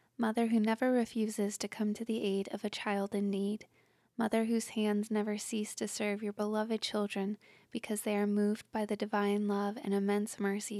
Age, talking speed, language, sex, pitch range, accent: 20-39, 195 wpm, English, female, 200-220 Hz, American